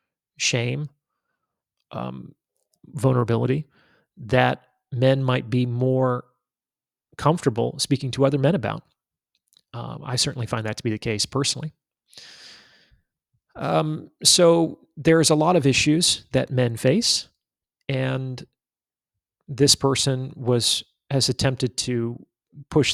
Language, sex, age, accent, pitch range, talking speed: English, male, 30-49, American, 120-135 Hz, 110 wpm